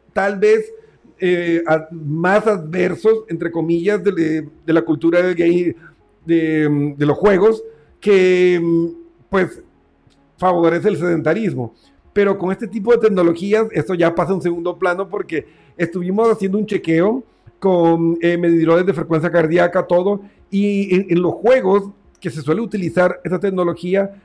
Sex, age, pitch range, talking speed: male, 50-69, 160-195 Hz, 140 wpm